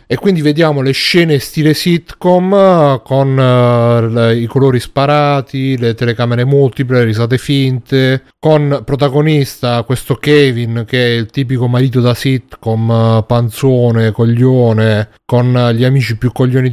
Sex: male